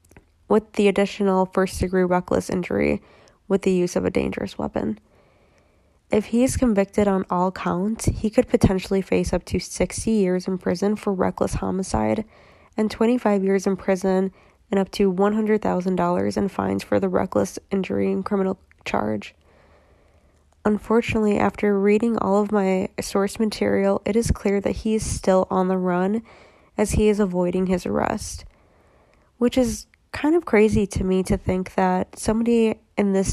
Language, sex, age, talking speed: English, female, 20-39, 160 wpm